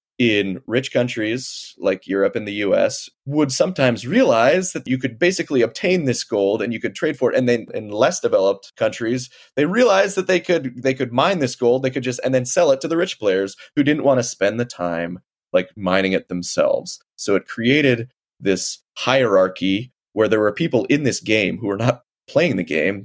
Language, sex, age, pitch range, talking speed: English, male, 30-49, 100-130 Hz, 210 wpm